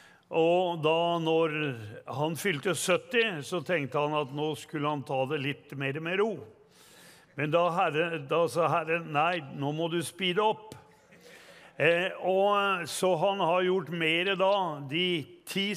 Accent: Swedish